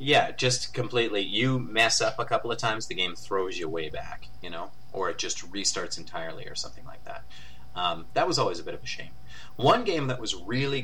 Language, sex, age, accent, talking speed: English, male, 30-49, American, 225 wpm